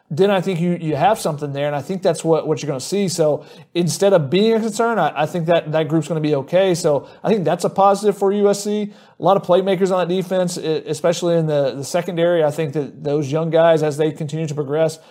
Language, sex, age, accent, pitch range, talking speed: English, male, 30-49, American, 160-195 Hz, 260 wpm